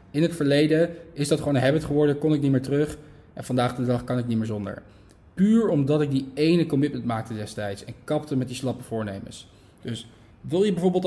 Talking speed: 220 wpm